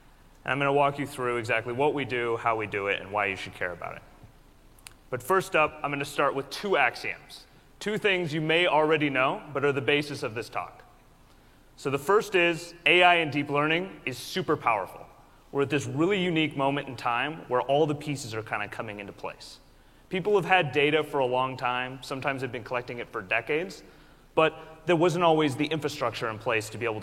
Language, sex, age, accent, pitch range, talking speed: English, male, 30-49, American, 125-155 Hz, 220 wpm